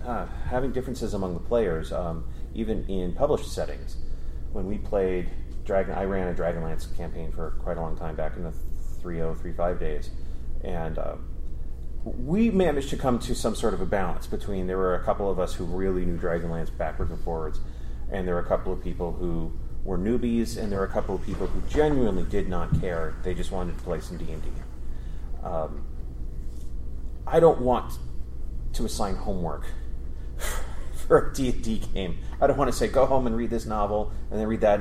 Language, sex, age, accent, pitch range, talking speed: English, male, 30-49, American, 65-100 Hz, 195 wpm